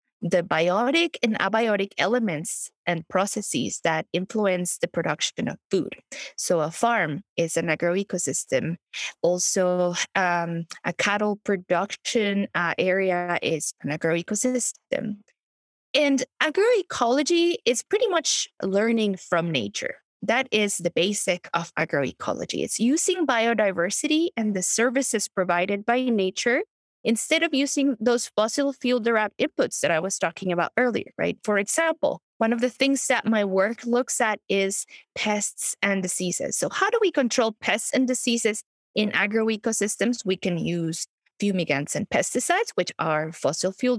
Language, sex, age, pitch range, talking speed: English, female, 20-39, 180-250 Hz, 140 wpm